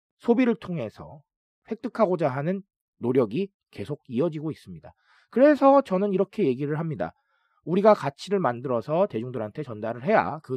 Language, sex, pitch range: Korean, male, 135-210 Hz